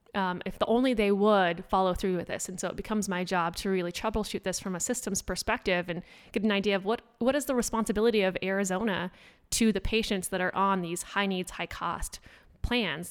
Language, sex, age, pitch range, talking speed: English, female, 20-39, 180-210 Hz, 215 wpm